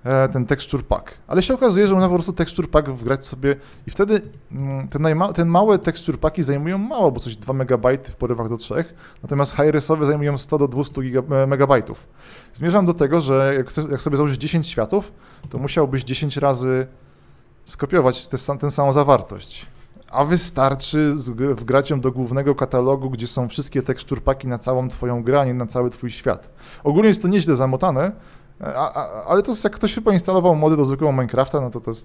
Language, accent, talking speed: Polish, native, 195 wpm